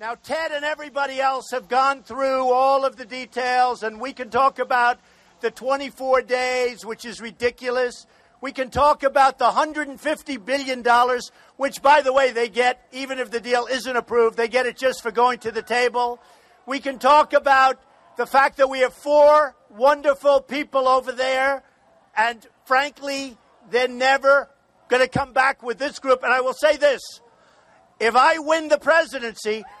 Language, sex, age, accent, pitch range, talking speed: English, male, 50-69, American, 235-275 Hz, 175 wpm